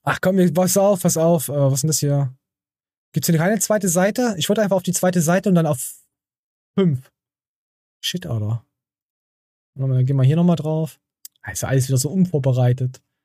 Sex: male